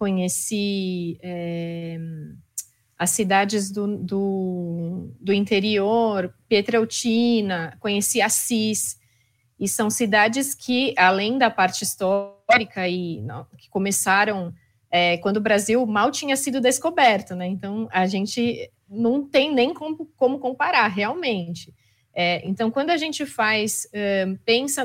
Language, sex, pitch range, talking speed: Portuguese, female, 185-250 Hz, 100 wpm